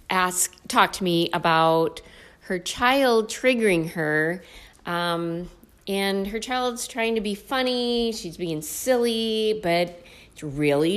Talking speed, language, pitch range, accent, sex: 120 wpm, English, 160-215 Hz, American, female